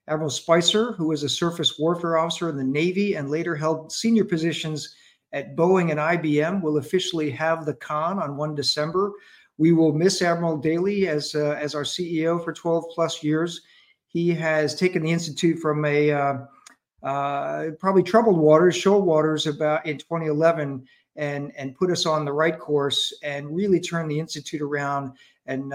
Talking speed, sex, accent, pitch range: 175 wpm, male, American, 140-170 Hz